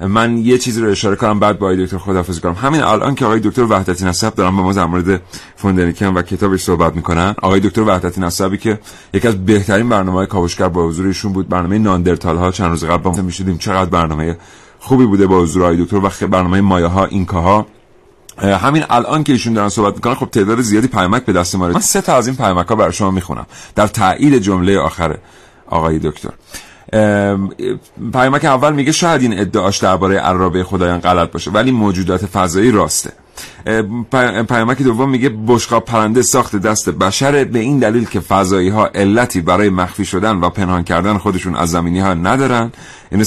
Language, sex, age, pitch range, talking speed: Persian, male, 40-59, 90-115 Hz, 185 wpm